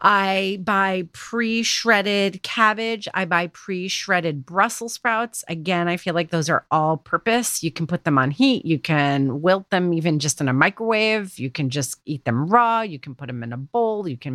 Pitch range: 155-205 Hz